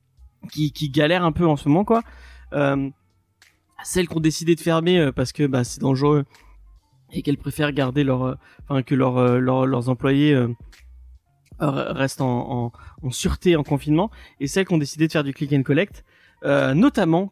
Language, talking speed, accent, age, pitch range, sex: French, 180 wpm, French, 20-39, 135-180 Hz, male